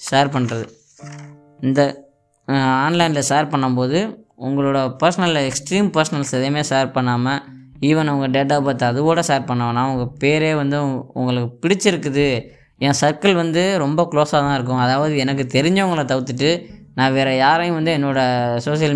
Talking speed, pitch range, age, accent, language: 140 wpm, 130-155 Hz, 20-39, native, Tamil